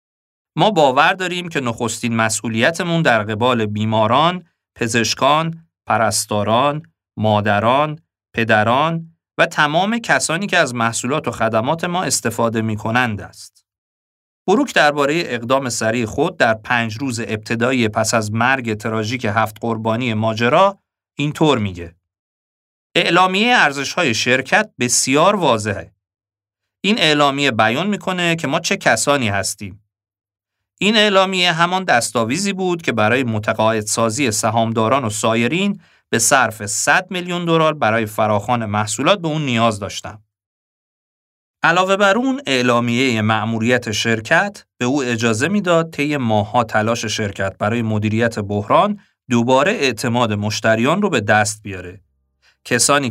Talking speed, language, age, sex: 120 wpm, Persian, 40-59, male